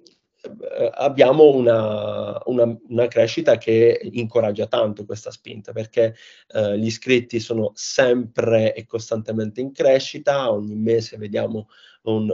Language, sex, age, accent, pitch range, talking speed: Italian, male, 20-39, native, 110-120 Hz, 110 wpm